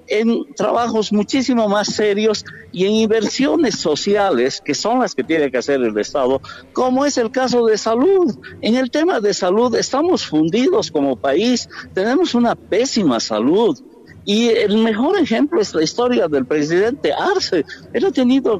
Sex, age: male, 60-79